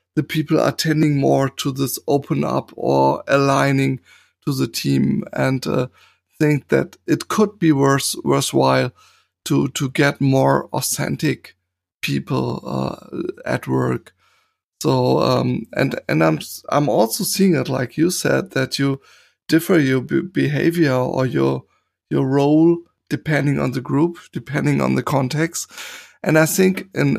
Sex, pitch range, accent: male, 130-160 Hz, German